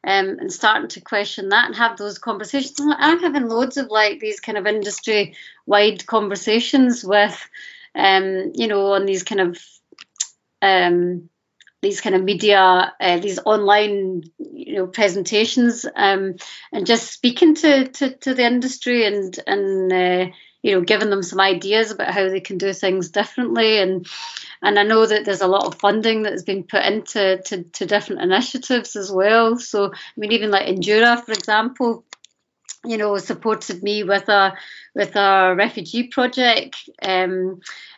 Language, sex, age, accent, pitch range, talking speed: English, female, 30-49, British, 195-230 Hz, 165 wpm